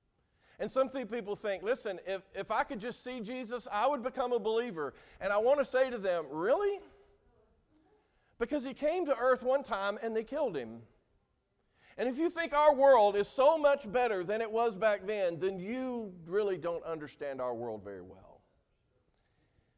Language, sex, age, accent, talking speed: English, male, 50-69, American, 180 wpm